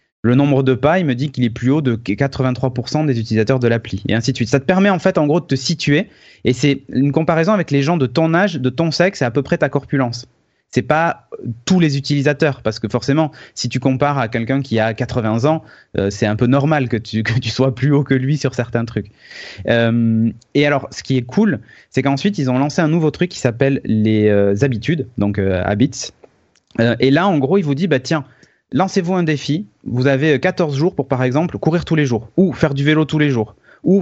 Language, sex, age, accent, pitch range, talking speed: French, male, 30-49, French, 120-155 Hz, 245 wpm